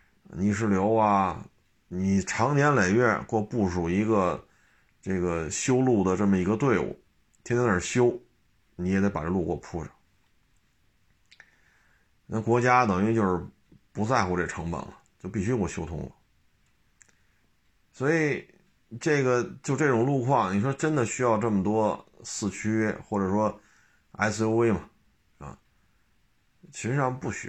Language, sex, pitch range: Chinese, male, 95-115 Hz